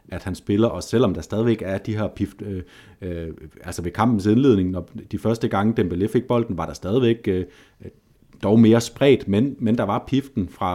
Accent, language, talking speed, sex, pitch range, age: native, Danish, 205 wpm, male, 95-115 Hz, 30-49